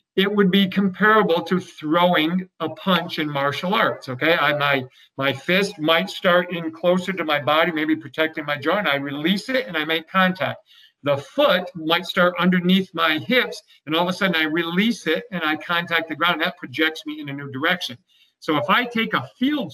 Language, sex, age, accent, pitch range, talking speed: English, male, 50-69, American, 155-185 Hz, 205 wpm